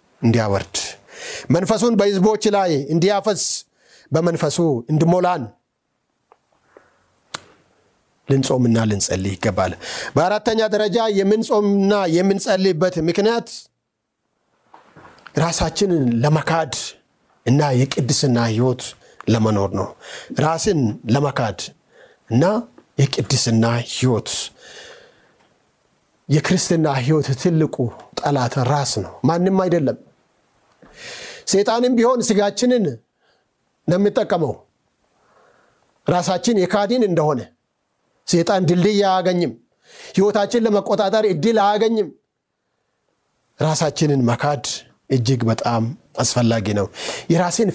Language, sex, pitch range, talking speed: Amharic, male, 135-205 Hz, 40 wpm